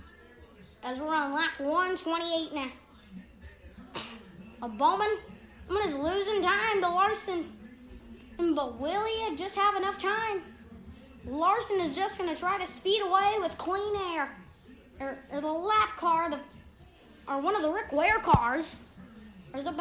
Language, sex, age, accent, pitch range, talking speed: English, female, 20-39, American, 270-390 Hz, 140 wpm